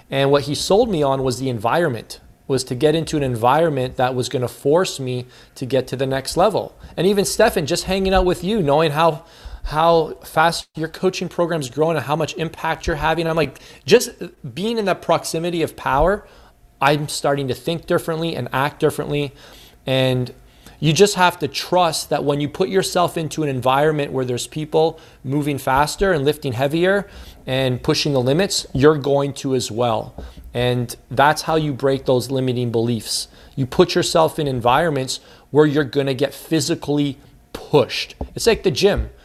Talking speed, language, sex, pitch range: 185 wpm, English, male, 135-165 Hz